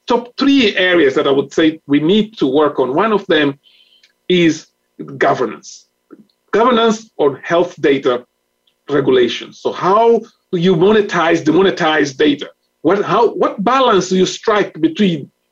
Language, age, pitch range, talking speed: English, 40-59, 165-250 Hz, 140 wpm